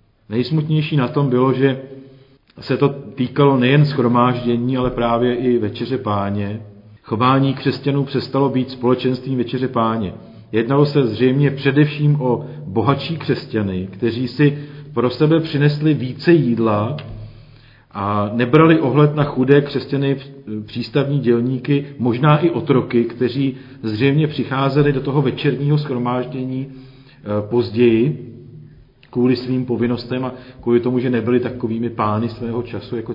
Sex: male